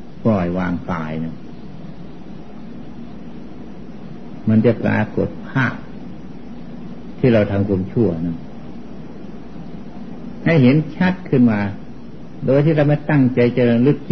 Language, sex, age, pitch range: Thai, male, 60-79, 100-135 Hz